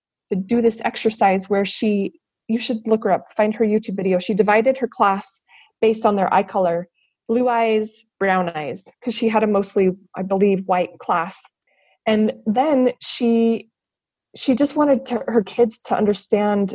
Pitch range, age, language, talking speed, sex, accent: 190-225 Hz, 30-49, English, 170 wpm, female, American